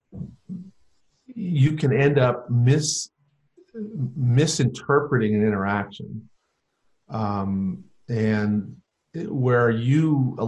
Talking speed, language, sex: 75 wpm, English, male